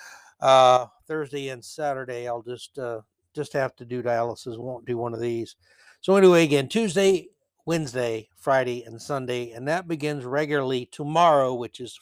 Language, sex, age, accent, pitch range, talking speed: English, male, 60-79, American, 125-175 Hz, 160 wpm